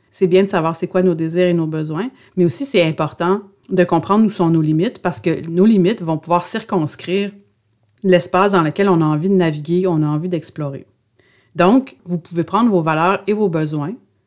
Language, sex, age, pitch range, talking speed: French, female, 40-59, 155-190 Hz, 205 wpm